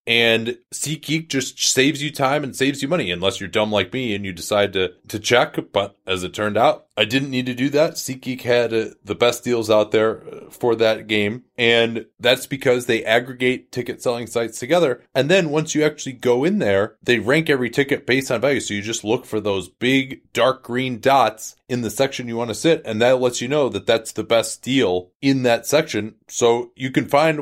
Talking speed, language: 220 wpm, English